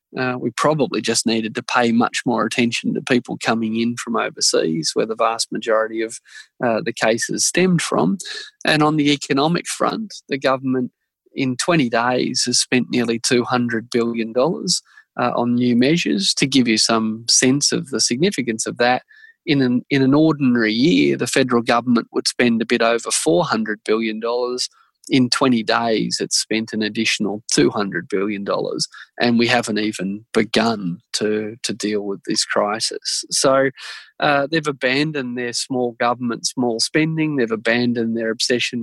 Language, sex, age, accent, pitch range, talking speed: English, male, 20-39, Australian, 115-135 Hz, 160 wpm